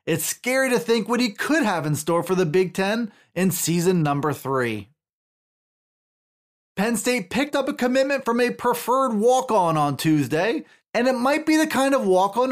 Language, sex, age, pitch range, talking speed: English, male, 30-49, 160-230 Hz, 185 wpm